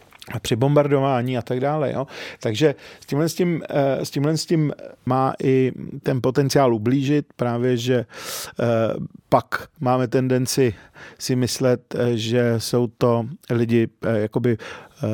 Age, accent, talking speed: 40-59, native, 125 wpm